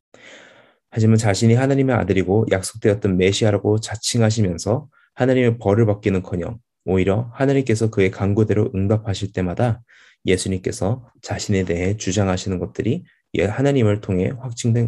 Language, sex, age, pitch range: Korean, male, 20-39, 95-115 Hz